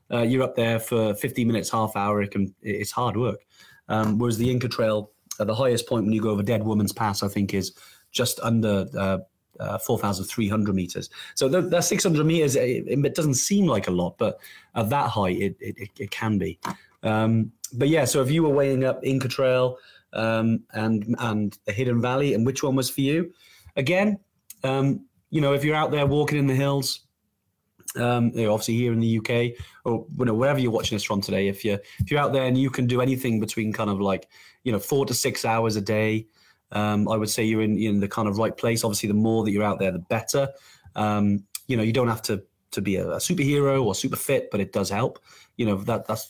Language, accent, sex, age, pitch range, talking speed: English, British, male, 30-49, 105-135 Hz, 235 wpm